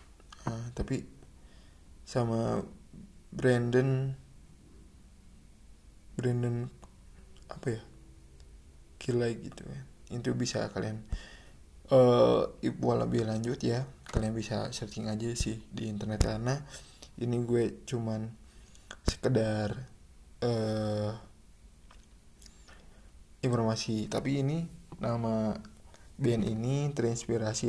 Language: Indonesian